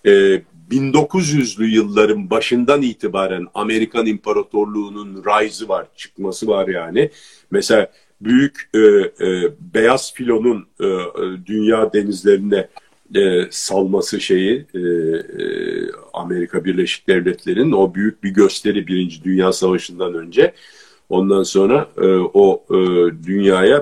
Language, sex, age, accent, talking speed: Turkish, male, 50-69, native, 105 wpm